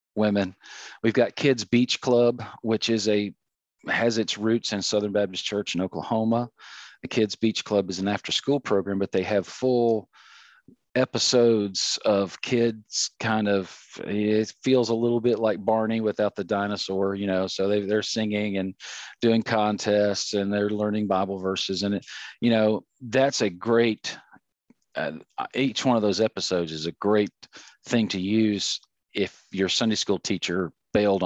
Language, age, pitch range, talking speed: English, 40-59, 95-115 Hz, 165 wpm